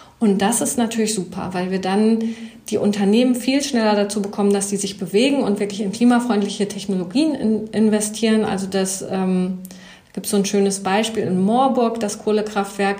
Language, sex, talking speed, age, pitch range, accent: German, female, 165 wpm, 40-59, 195-225 Hz, German